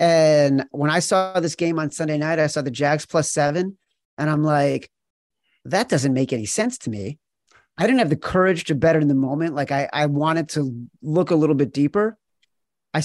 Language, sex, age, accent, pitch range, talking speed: English, male, 40-59, American, 140-175 Hz, 210 wpm